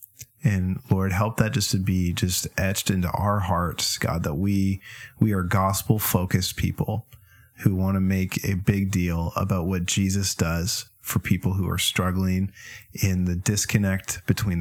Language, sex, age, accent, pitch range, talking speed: English, male, 30-49, American, 95-105 Hz, 160 wpm